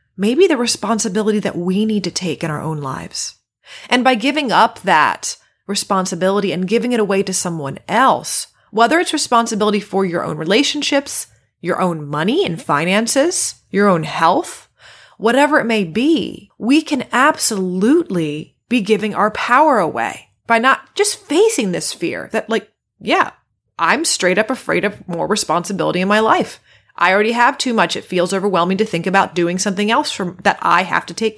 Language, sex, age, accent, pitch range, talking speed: English, female, 30-49, American, 180-240 Hz, 170 wpm